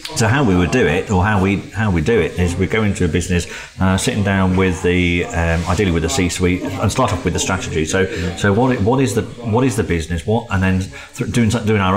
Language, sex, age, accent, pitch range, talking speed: English, male, 30-49, British, 90-100 Hz, 265 wpm